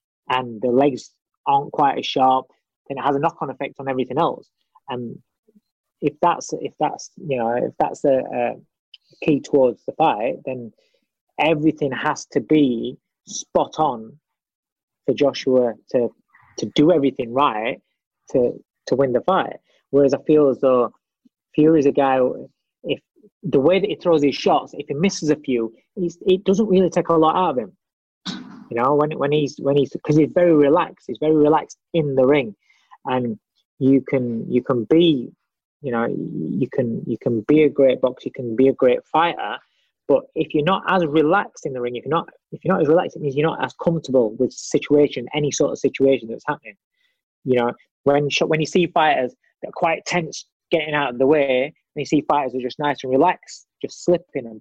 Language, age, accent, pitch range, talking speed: English, 20-39, British, 130-165 Hz, 190 wpm